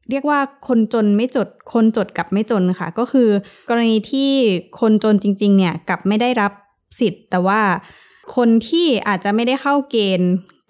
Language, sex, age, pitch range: Thai, female, 20-39, 190-240 Hz